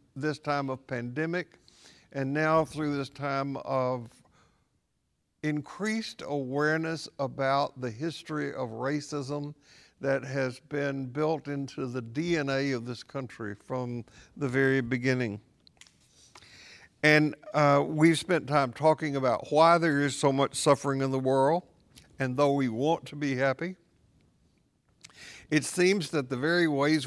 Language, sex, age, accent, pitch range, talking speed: English, male, 60-79, American, 130-150 Hz, 135 wpm